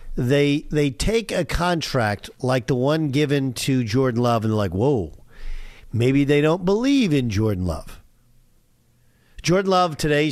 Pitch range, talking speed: 115-155 Hz, 150 wpm